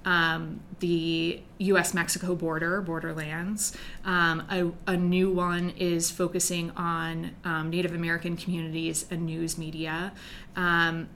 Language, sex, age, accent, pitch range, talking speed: English, female, 20-39, American, 165-185 Hz, 115 wpm